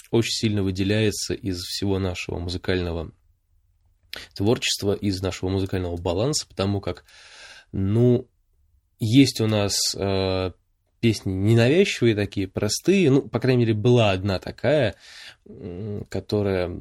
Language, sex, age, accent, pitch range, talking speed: Russian, male, 20-39, native, 90-115 Hz, 110 wpm